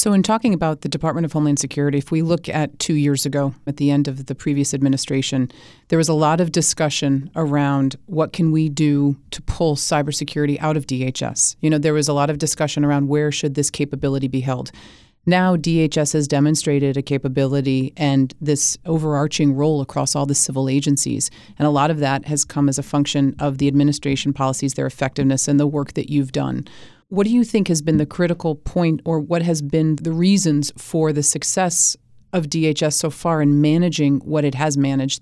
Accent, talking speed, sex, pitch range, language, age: American, 205 wpm, female, 140-160 Hz, English, 30-49